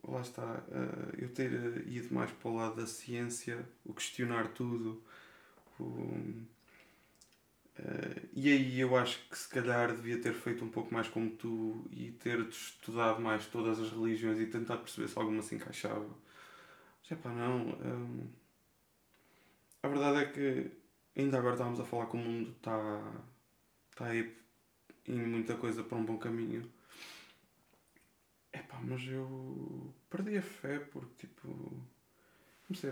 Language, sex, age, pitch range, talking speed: Portuguese, male, 20-39, 110-125 Hz, 150 wpm